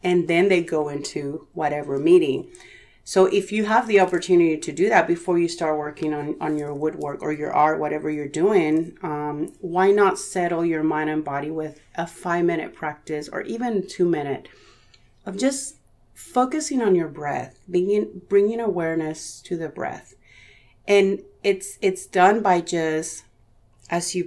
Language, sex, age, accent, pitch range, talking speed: English, female, 30-49, American, 155-185 Hz, 160 wpm